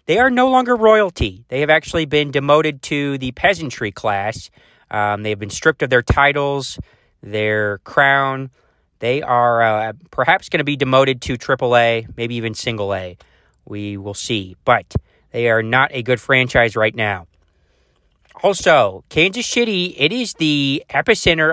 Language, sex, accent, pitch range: English, male, American, 115-145 Hz